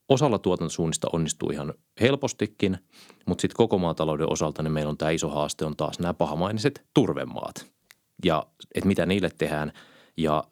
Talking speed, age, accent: 155 wpm, 30-49, native